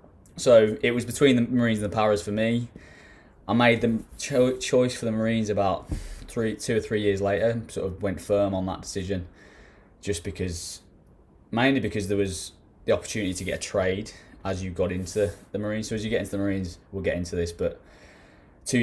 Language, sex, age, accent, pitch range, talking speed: English, male, 10-29, British, 95-110 Hz, 205 wpm